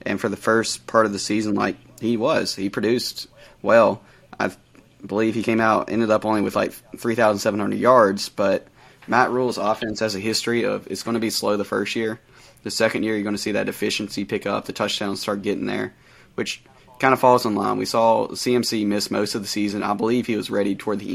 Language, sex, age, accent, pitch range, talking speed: English, male, 20-39, American, 100-120 Hz, 225 wpm